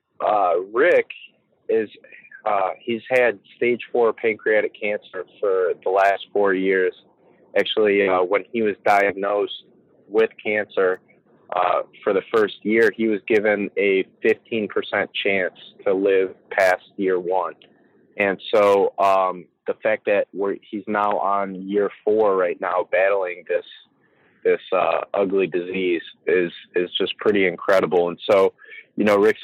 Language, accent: English, American